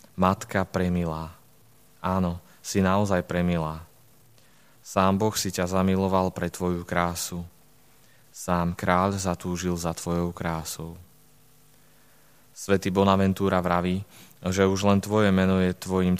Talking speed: 110 wpm